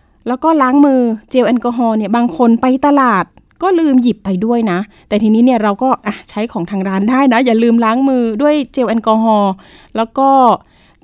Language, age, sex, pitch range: Thai, 20-39, female, 215-260 Hz